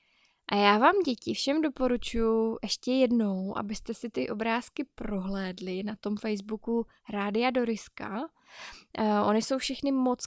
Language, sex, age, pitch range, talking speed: Czech, female, 10-29, 205-265 Hz, 135 wpm